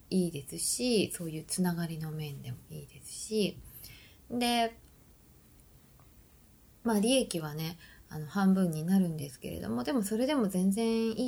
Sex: female